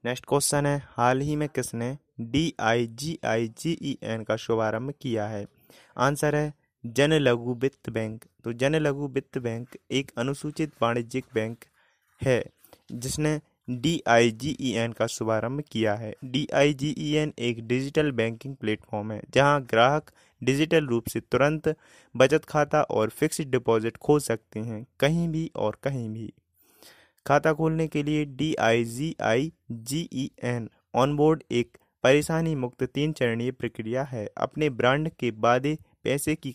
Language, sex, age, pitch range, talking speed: Hindi, male, 20-39, 115-150 Hz, 140 wpm